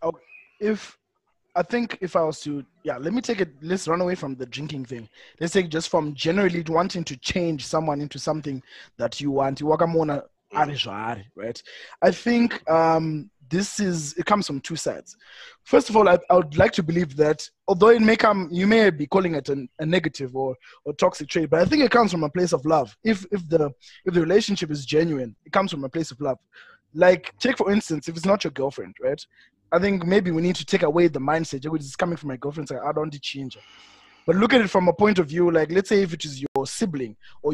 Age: 20-39